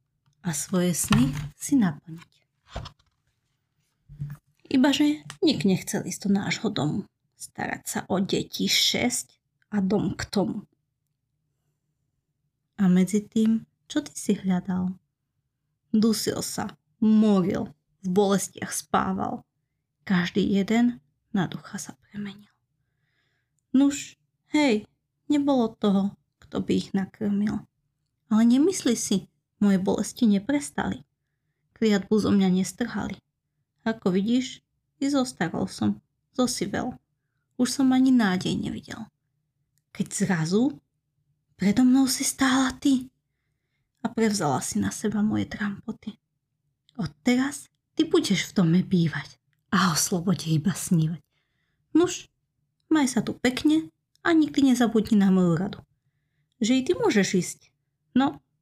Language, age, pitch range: Slovak, 20-39, 145-225 Hz